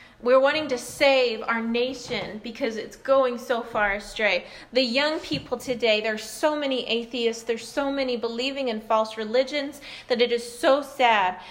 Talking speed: 170 wpm